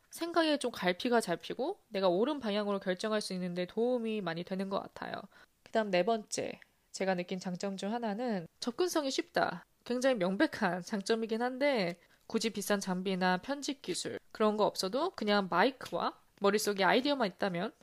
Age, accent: 20-39, native